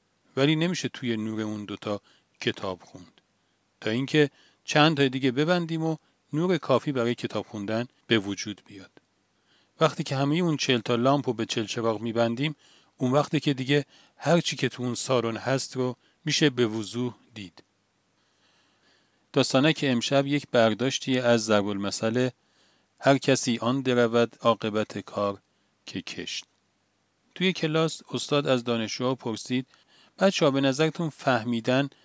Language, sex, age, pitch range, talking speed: Persian, male, 40-59, 110-145 Hz, 140 wpm